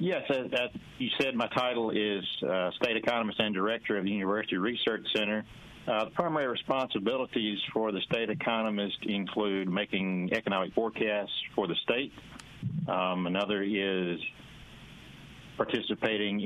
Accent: American